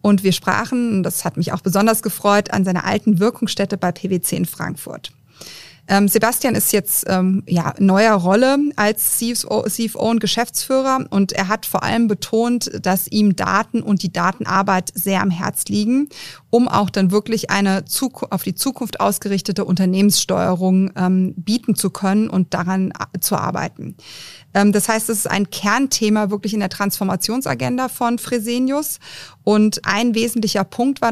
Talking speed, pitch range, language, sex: 150 wpm, 190-225 Hz, German, female